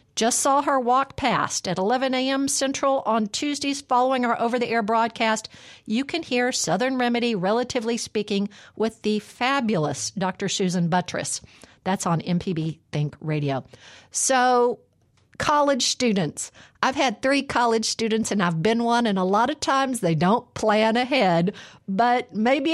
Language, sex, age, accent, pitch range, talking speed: English, female, 50-69, American, 185-250 Hz, 150 wpm